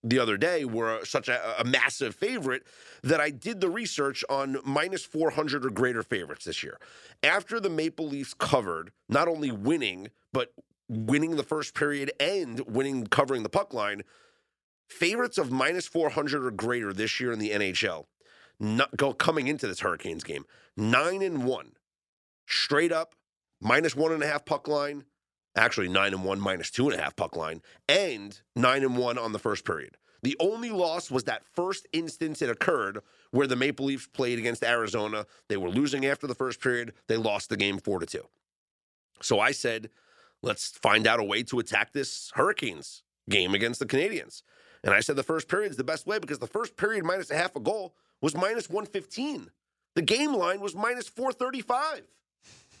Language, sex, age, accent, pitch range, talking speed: English, male, 30-49, American, 120-165 Hz, 185 wpm